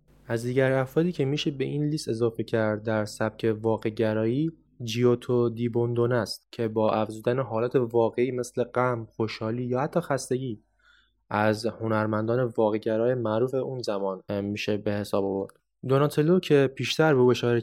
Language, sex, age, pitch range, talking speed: English, male, 20-39, 110-135 Hz, 145 wpm